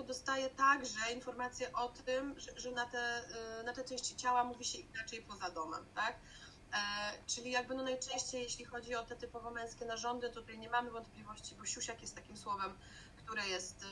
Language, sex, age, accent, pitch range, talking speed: Polish, female, 30-49, native, 210-245 Hz, 185 wpm